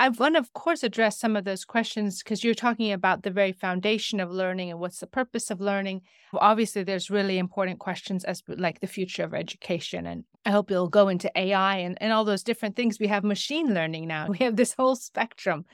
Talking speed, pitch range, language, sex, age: 225 wpm, 185-215 Hz, English, female, 30-49